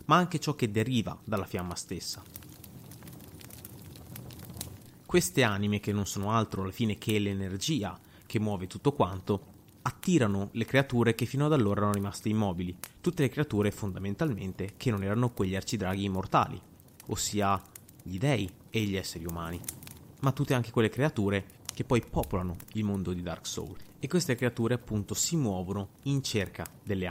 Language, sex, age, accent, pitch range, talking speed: Italian, male, 30-49, native, 100-115 Hz, 155 wpm